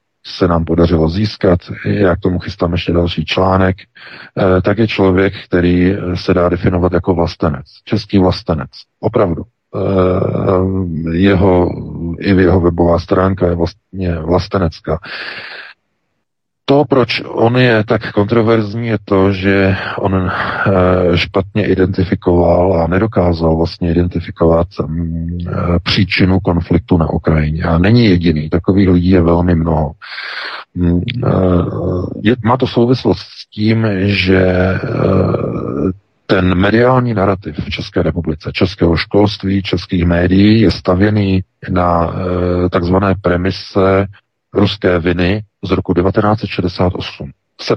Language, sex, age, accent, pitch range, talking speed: Czech, male, 40-59, native, 85-100 Hz, 110 wpm